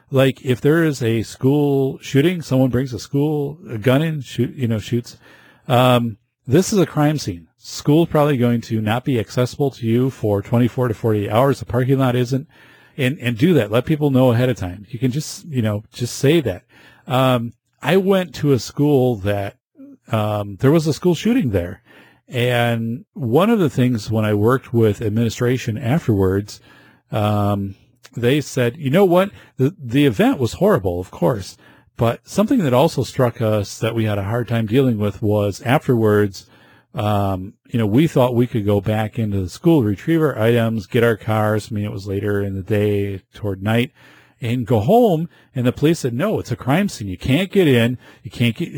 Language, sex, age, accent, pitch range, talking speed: English, male, 40-59, American, 110-140 Hz, 200 wpm